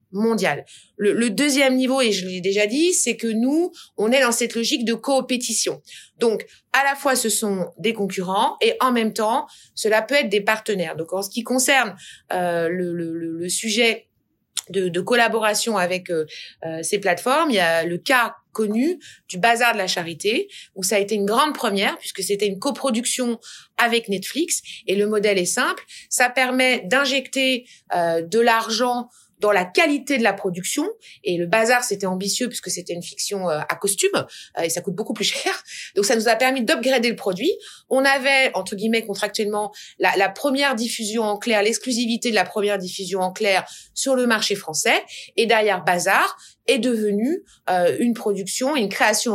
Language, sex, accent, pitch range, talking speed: French, female, French, 195-260 Hz, 185 wpm